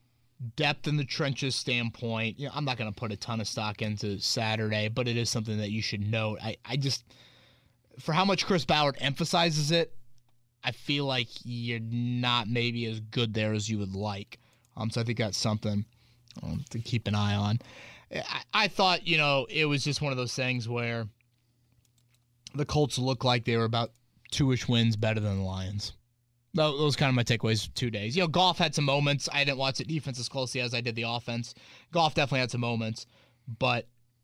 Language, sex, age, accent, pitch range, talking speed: English, male, 20-39, American, 115-135 Hz, 210 wpm